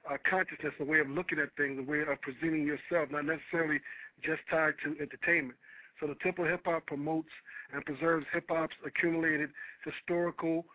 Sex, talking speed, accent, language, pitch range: male, 165 wpm, American, English, 150-175 Hz